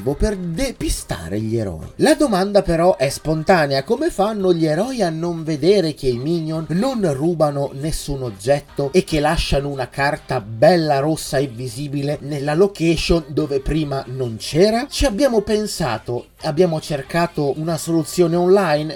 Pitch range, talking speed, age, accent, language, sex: 135-190 Hz, 145 wpm, 30-49, native, Italian, male